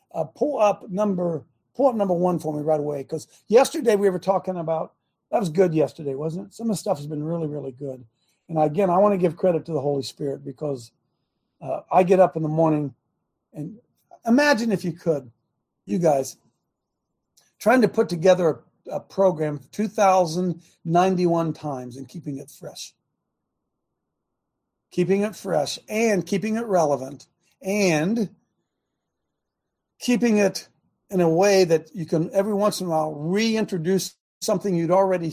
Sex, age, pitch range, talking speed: male, 50-69, 145-190 Hz, 165 wpm